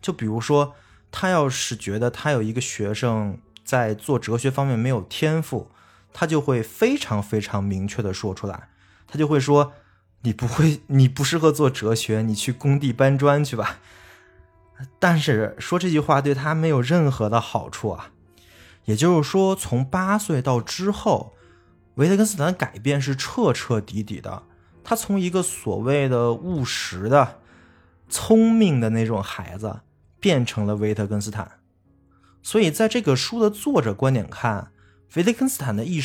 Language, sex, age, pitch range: Chinese, male, 20-39, 105-150 Hz